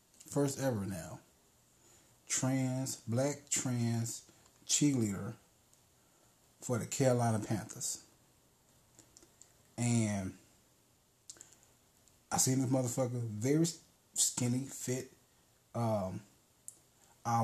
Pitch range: 110-125 Hz